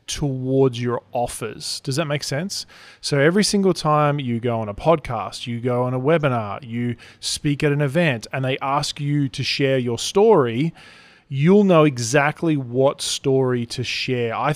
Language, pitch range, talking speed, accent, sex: English, 125-155 Hz, 175 wpm, Australian, male